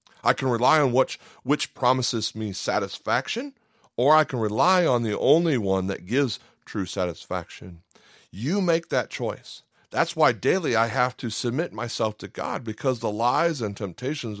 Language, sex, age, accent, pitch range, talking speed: English, male, 40-59, American, 110-150 Hz, 165 wpm